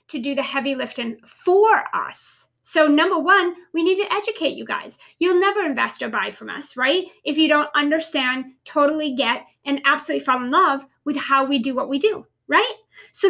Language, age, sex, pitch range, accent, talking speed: English, 40-59, female, 275-350 Hz, American, 200 wpm